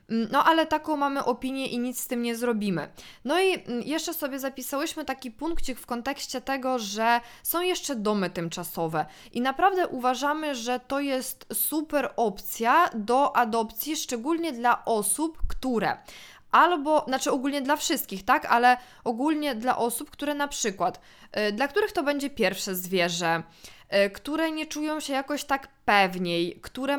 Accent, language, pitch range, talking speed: native, Polish, 220-285 Hz, 150 wpm